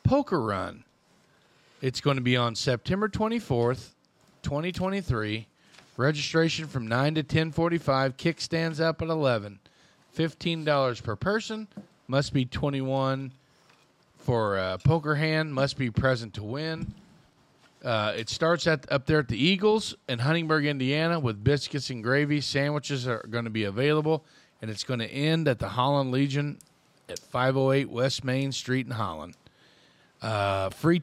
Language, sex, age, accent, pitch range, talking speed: English, male, 40-59, American, 120-150 Hz, 145 wpm